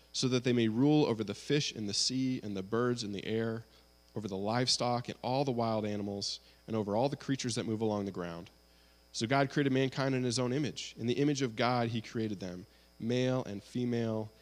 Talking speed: 225 wpm